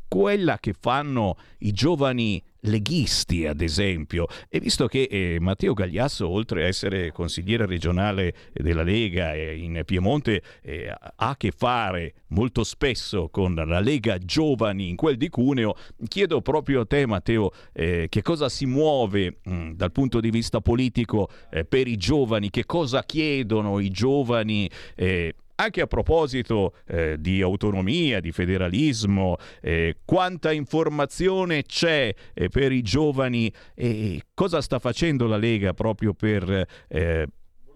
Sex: male